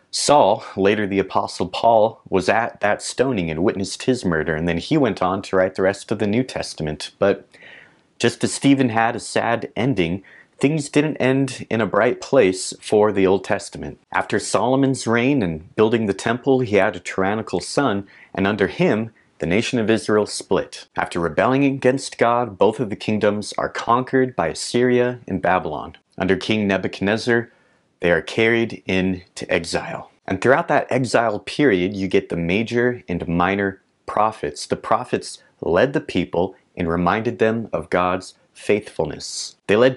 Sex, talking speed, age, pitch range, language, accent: male, 170 wpm, 30-49, 95-120 Hz, English, American